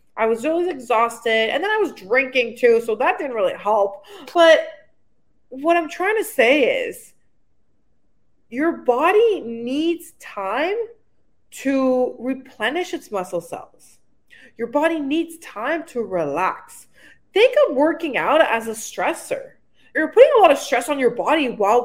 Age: 20-39